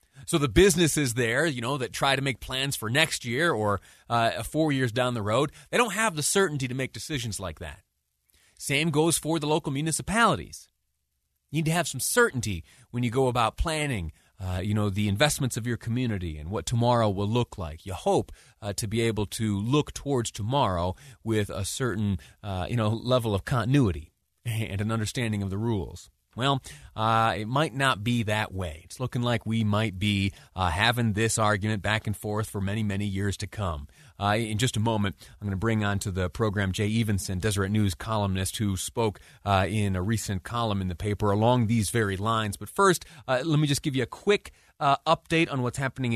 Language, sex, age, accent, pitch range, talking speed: English, male, 30-49, American, 100-135 Hz, 210 wpm